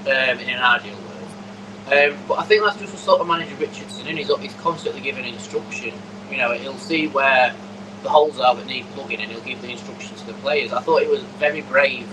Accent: British